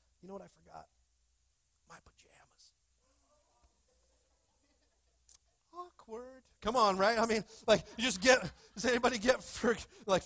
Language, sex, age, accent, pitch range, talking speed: English, male, 30-49, American, 130-180 Hz, 125 wpm